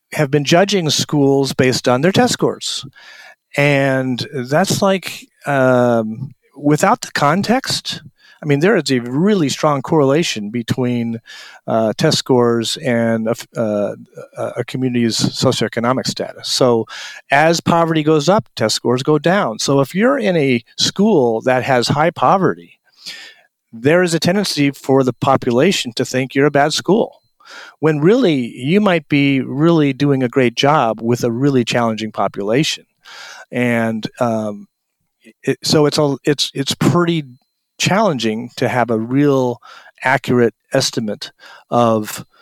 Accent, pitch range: American, 120-170 Hz